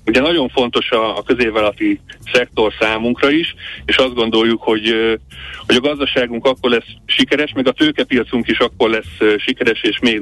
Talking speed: 160 wpm